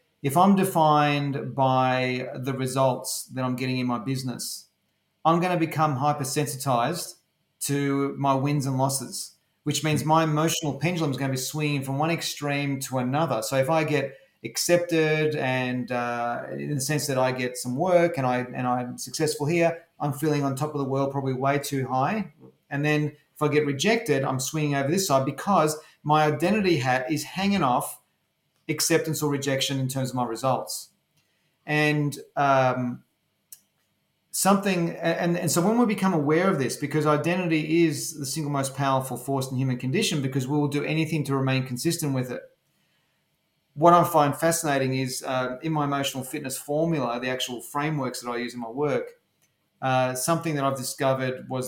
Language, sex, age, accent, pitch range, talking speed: English, male, 30-49, Australian, 130-155 Hz, 175 wpm